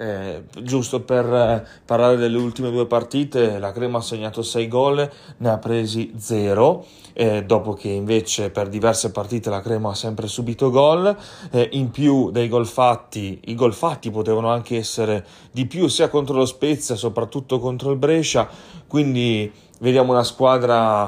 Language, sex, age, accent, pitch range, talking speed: Italian, male, 30-49, native, 115-135 Hz, 165 wpm